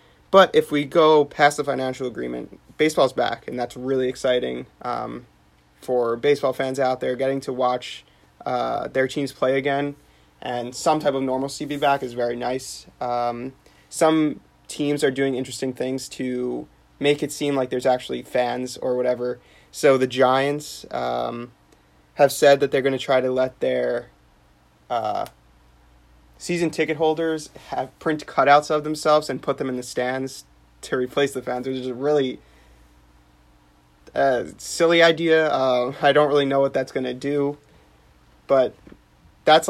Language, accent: English, American